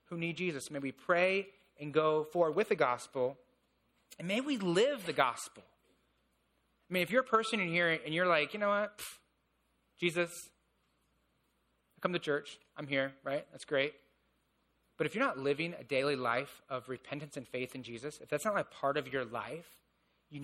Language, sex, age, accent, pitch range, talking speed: English, male, 30-49, American, 130-170 Hz, 195 wpm